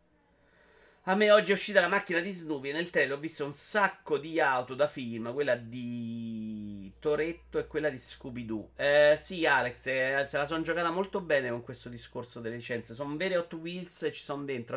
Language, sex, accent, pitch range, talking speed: Italian, male, native, 130-200 Hz, 205 wpm